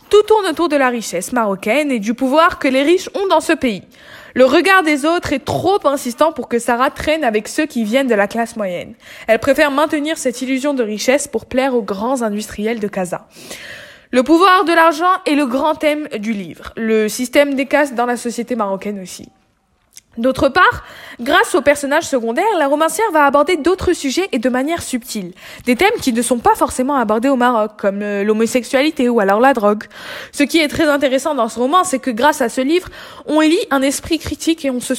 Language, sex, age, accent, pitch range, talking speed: French, female, 20-39, French, 230-310 Hz, 210 wpm